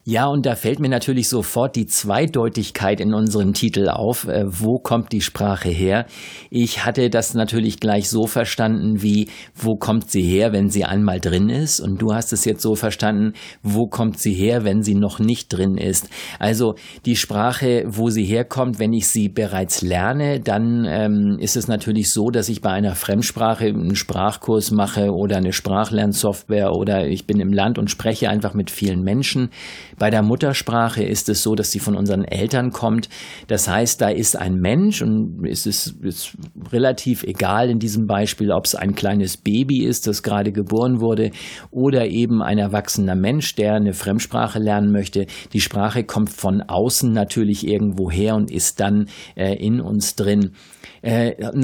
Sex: male